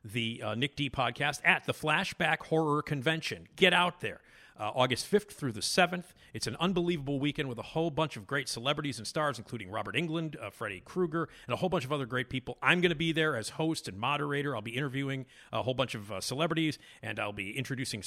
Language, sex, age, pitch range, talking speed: English, male, 40-59, 115-155 Hz, 225 wpm